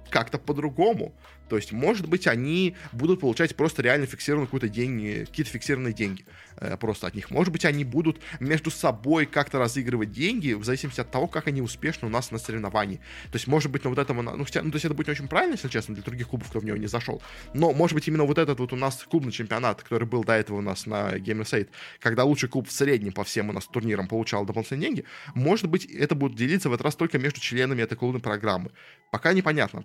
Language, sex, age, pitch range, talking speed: Russian, male, 20-39, 110-150 Hz, 230 wpm